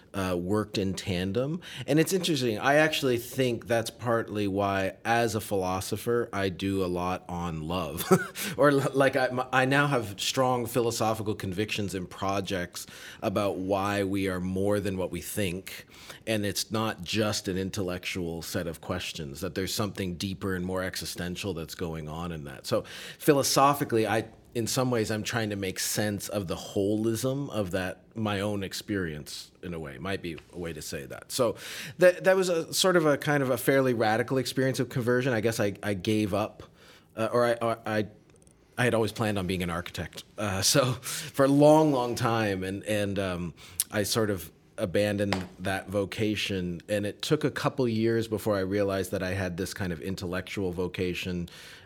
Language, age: English, 30-49